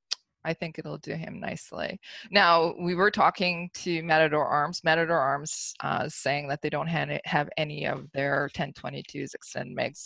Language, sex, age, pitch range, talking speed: English, female, 20-39, 140-165 Hz, 160 wpm